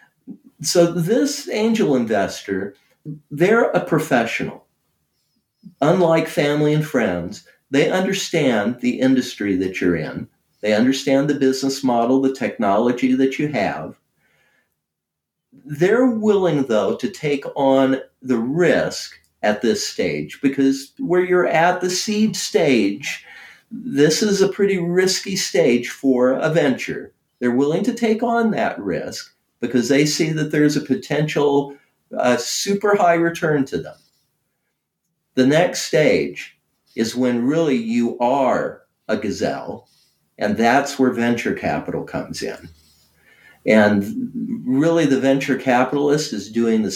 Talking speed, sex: 125 wpm, male